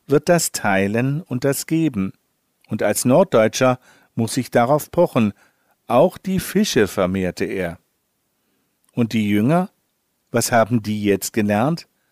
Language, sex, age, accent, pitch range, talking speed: German, male, 50-69, German, 115-155 Hz, 130 wpm